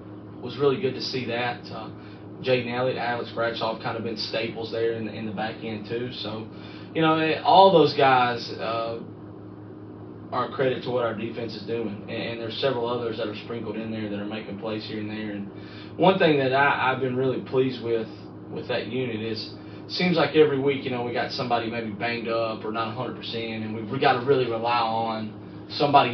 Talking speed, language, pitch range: 215 wpm, English, 110-135 Hz